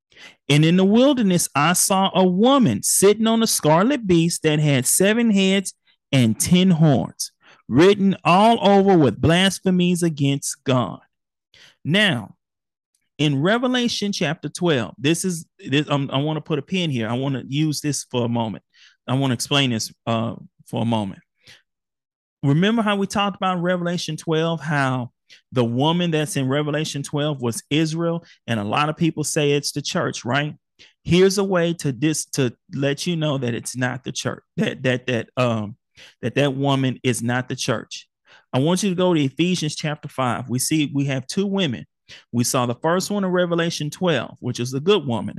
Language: English